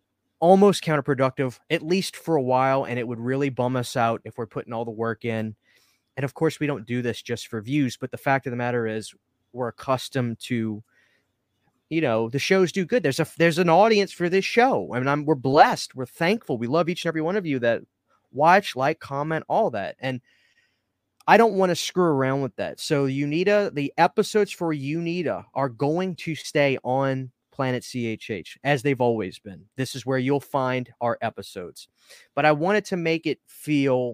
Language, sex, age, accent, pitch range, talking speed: English, male, 20-39, American, 120-160 Hz, 205 wpm